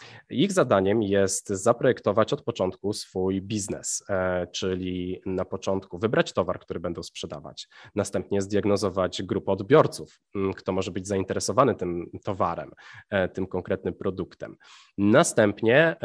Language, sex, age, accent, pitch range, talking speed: Polish, male, 20-39, native, 100-110 Hz, 110 wpm